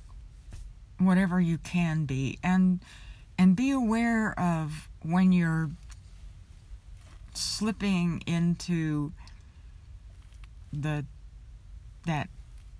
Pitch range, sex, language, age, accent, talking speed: 125-175 Hz, female, English, 60-79, American, 70 wpm